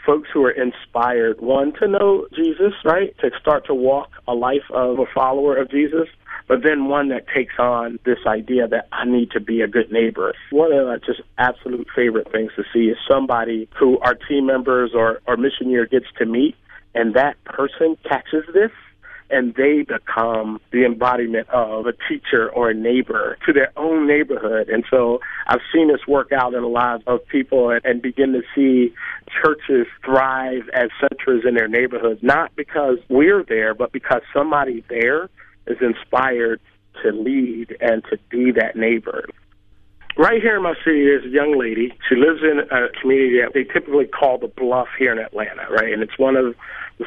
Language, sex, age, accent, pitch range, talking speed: English, male, 30-49, American, 120-145 Hz, 185 wpm